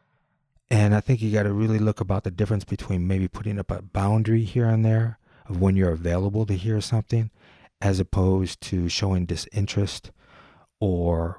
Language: English